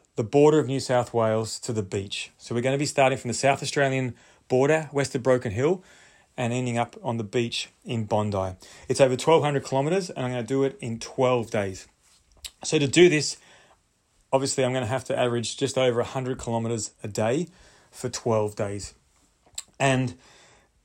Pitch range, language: 110-135 Hz, English